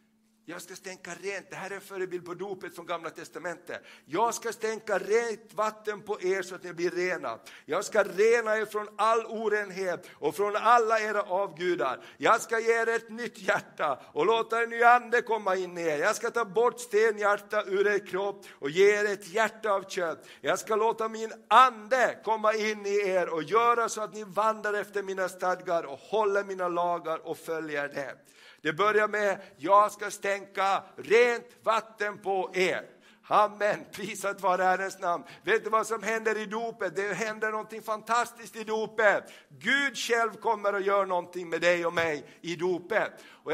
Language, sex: Swedish, male